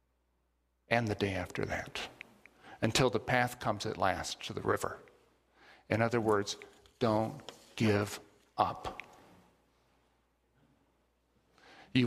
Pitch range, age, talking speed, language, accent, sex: 95-120 Hz, 50-69, 105 wpm, English, American, male